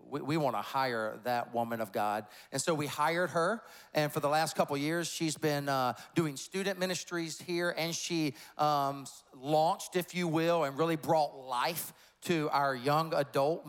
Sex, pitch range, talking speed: male, 135-175 Hz, 185 wpm